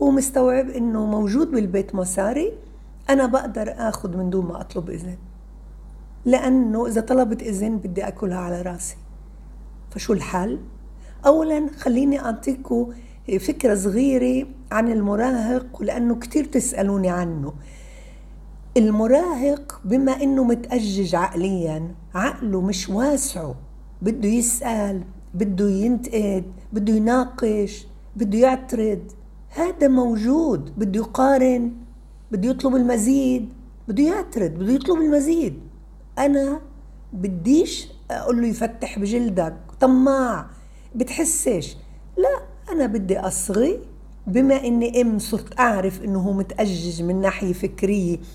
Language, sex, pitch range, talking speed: Arabic, female, 195-260 Hz, 105 wpm